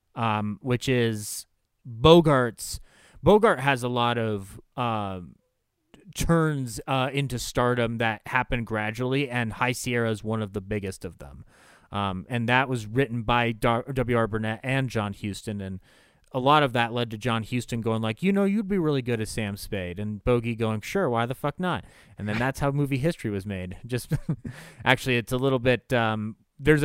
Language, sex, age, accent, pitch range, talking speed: English, male, 30-49, American, 110-140 Hz, 185 wpm